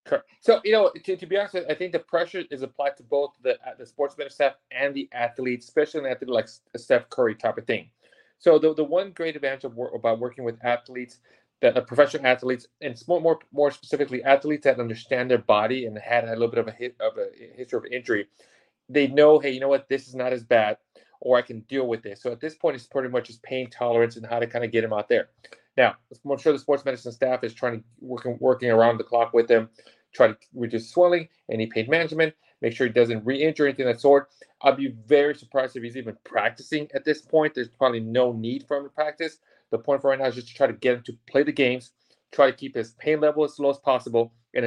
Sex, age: male, 30-49